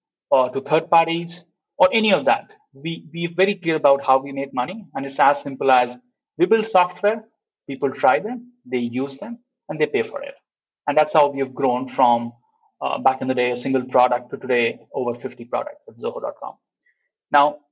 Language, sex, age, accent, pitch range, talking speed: English, male, 30-49, Indian, 130-180 Hz, 200 wpm